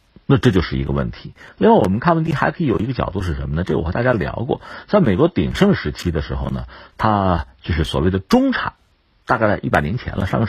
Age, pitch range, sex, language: 50-69, 75-125 Hz, male, Chinese